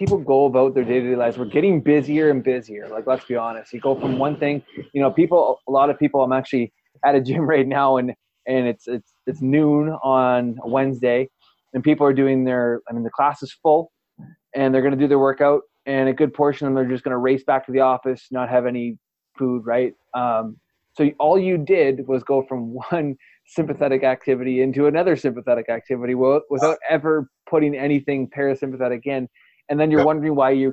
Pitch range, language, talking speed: 125-145 Hz, English, 210 wpm